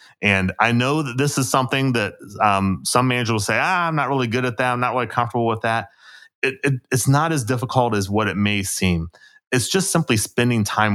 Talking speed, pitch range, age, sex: 220 wpm, 95-125 Hz, 30-49, male